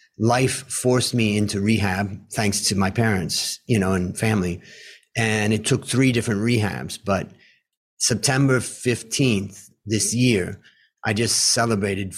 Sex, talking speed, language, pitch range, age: male, 135 wpm, English, 100-115 Hz, 30-49